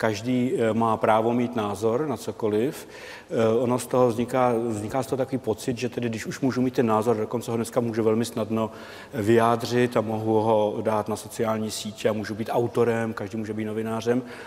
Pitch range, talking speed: 110-125 Hz, 190 wpm